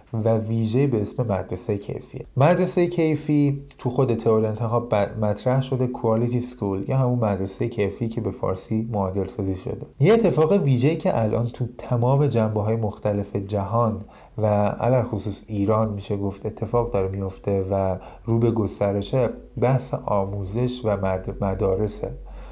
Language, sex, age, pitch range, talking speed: Persian, male, 30-49, 100-125 Hz, 140 wpm